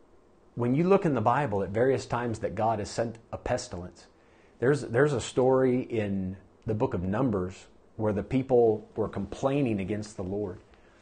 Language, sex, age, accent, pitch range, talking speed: English, male, 40-59, American, 100-130 Hz, 175 wpm